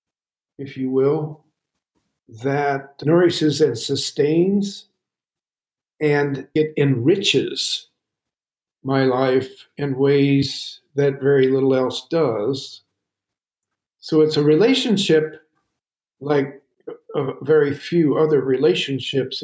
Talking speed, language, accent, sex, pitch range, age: 90 wpm, English, American, male, 135-155 Hz, 50-69